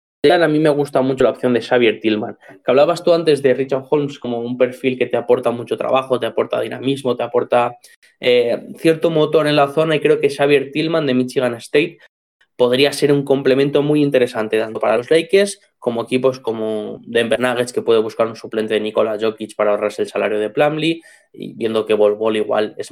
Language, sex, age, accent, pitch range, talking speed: Spanish, male, 20-39, Spanish, 115-150 Hz, 205 wpm